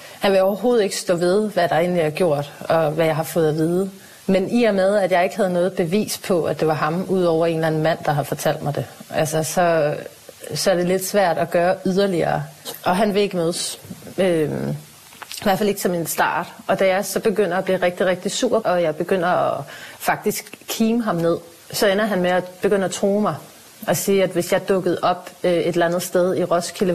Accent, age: native, 30-49